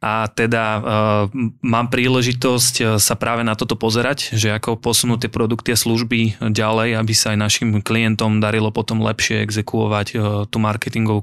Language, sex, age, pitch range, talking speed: Slovak, male, 20-39, 110-120 Hz, 160 wpm